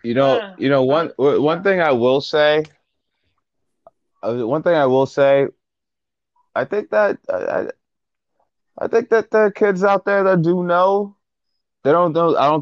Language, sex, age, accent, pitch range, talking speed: English, male, 20-39, American, 90-130 Hz, 160 wpm